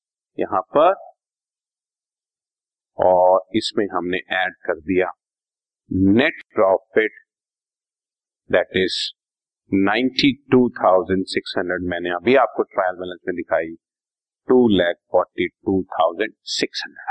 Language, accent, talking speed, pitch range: Hindi, native, 80 wpm, 120-200 Hz